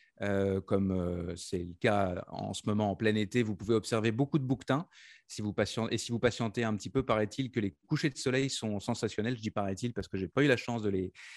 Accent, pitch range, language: French, 105-125 Hz, French